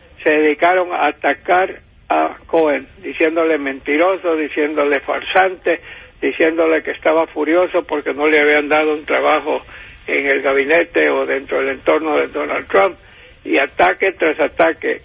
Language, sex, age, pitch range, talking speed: Spanish, male, 60-79, 155-175 Hz, 140 wpm